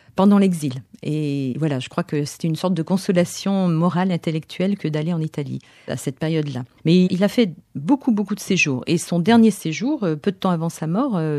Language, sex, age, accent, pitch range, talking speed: French, female, 40-59, French, 160-210 Hz, 205 wpm